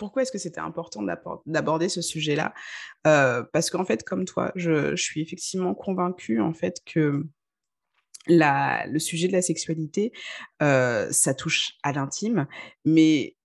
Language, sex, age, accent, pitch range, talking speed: French, female, 20-39, French, 140-175 Hz, 150 wpm